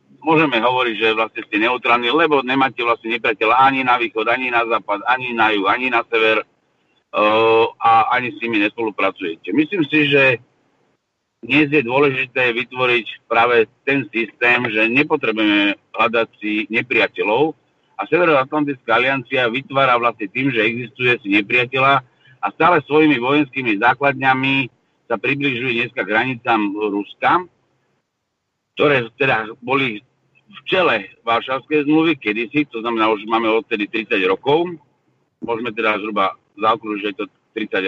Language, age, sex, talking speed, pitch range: Czech, 50-69, male, 135 wpm, 115-150 Hz